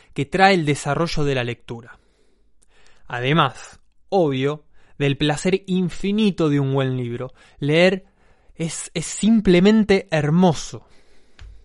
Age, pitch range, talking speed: 20-39, 140-190 Hz, 110 wpm